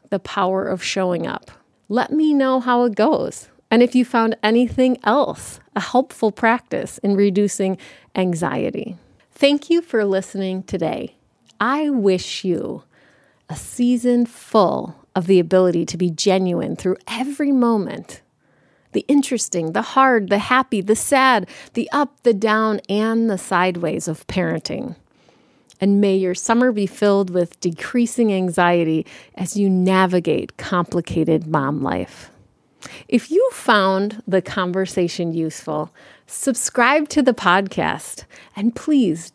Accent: American